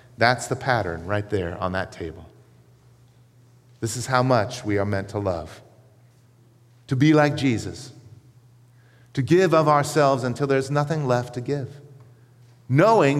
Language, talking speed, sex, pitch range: English, 145 wpm, male, 115-135 Hz